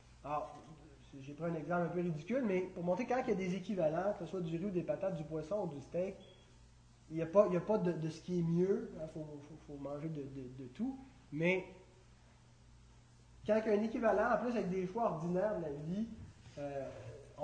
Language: French